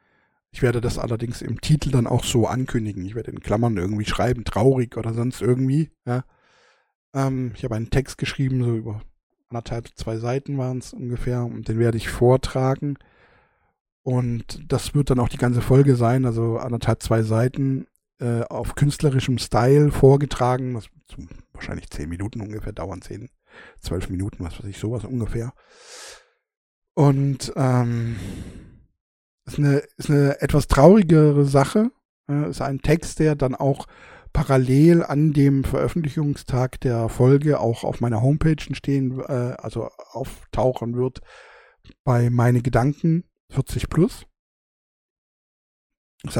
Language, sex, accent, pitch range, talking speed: German, male, German, 115-140 Hz, 140 wpm